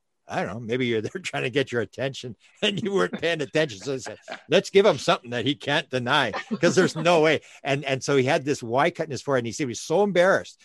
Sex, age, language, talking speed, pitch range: male, 50-69, English, 275 wpm, 120-145 Hz